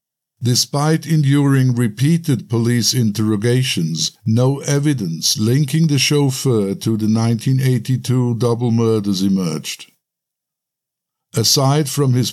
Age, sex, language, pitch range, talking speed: 60-79, male, English, 110-135 Hz, 90 wpm